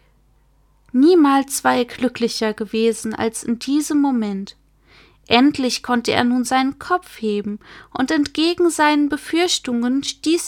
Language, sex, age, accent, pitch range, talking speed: German, female, 20-39, German, 210-265 Hz, 120 wpm